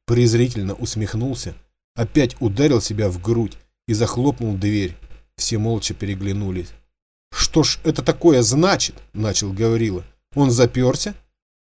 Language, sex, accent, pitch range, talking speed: Russian, male, native, 105-135 Hz, 115 wpm